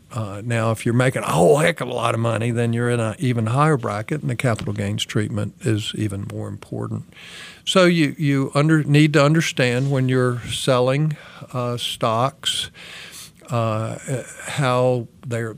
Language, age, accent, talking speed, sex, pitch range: English, 50-69, American, 165 wpm, male, 115-145 Hz